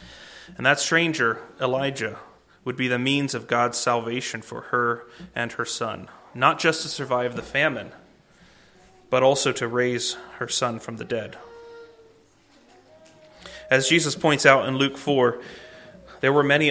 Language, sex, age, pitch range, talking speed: English, male, 30-49, 120-145 Hz, 145 wpm